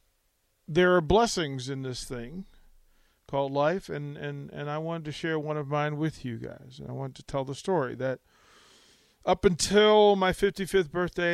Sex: male